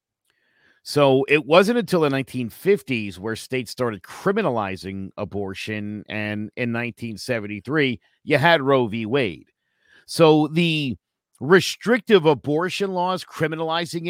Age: 50-69